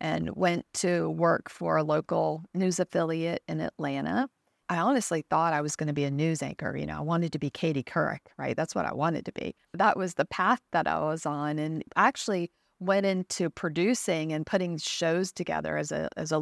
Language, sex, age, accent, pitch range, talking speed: English, female, 40-59, American, 155-195 Hz, 205 wpm